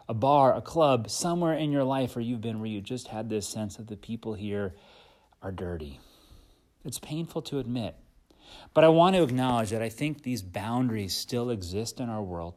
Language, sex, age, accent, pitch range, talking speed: English, male, 30-49, American, 105-130 Hz, 200 wpm